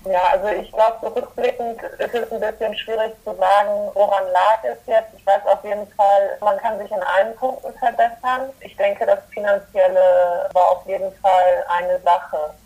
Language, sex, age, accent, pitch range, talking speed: German, female, 30-49, German, 190-225 Hz, 180 wpm